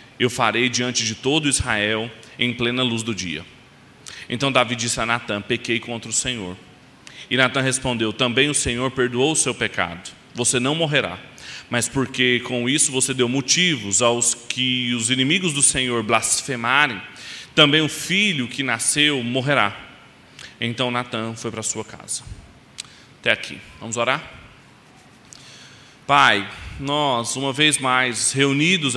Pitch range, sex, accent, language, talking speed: 120-140 Hz, male, Brazilian, Portuguese, 145 wpm